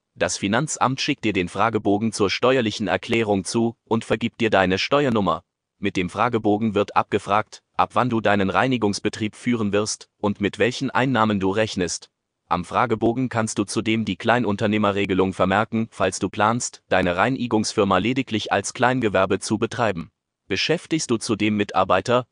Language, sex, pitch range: German, male, 100-115 Hz